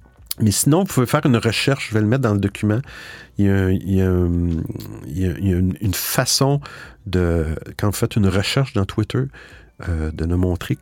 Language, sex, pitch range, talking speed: French, male, 90-115 Hz, 185 wpm